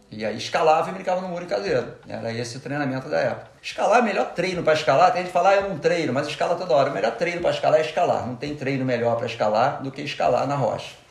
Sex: male